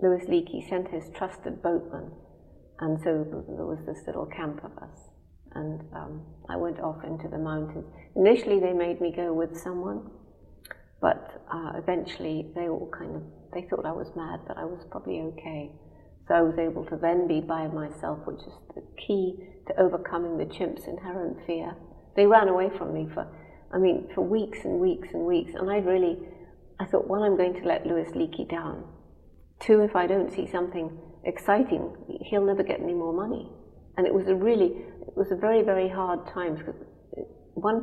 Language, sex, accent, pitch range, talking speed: English, female, British, 160-200 Hz, 190 wpm